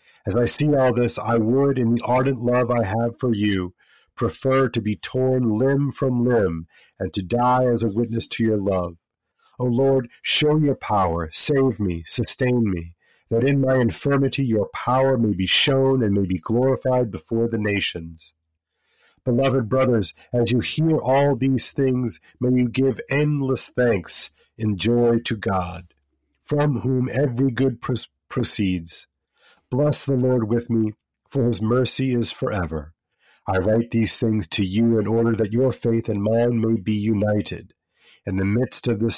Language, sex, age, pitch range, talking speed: English, male, 40-59, 100-125 Hz, 165 wpm